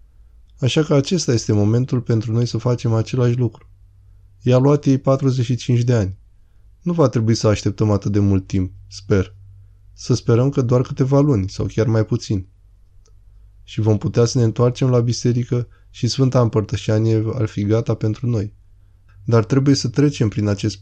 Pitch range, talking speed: 100-120 Hz, 175 wpm